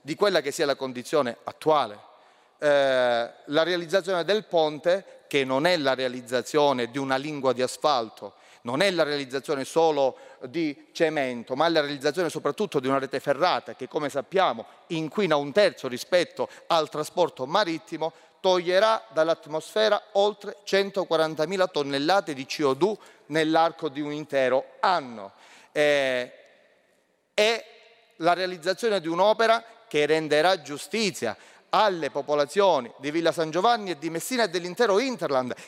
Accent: native